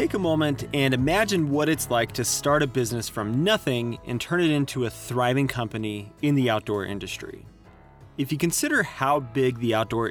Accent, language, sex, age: American, English, male, 30-49